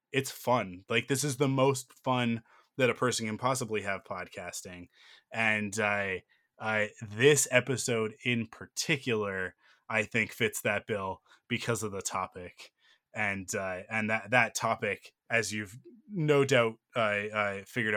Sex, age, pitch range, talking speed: male, 20-39, 105-125 Hz, 155 wpm